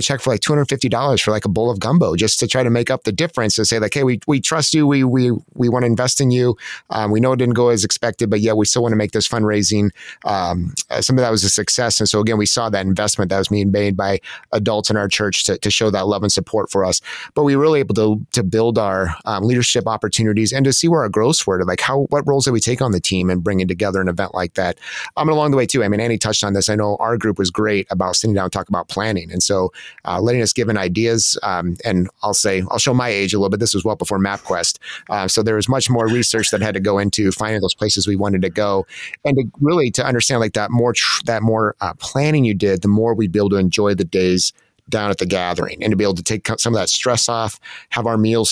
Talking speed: 285 wpm